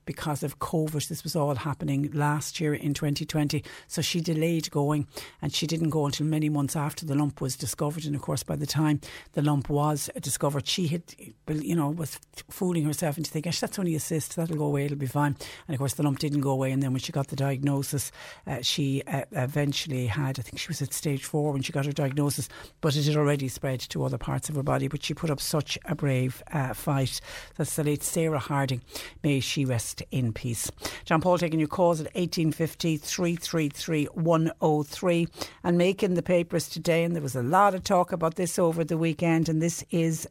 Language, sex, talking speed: English, female, 220 wpm